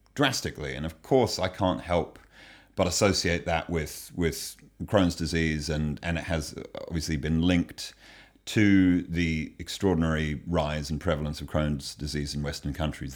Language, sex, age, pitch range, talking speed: English, male, 40-59, 80-95 Hz, 150 wpm